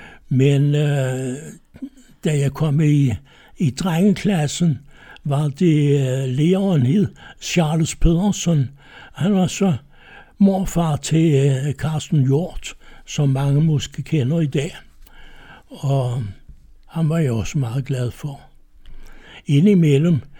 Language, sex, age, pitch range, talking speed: Danish, male, 60-79, 140-170 Hz, 110 wpm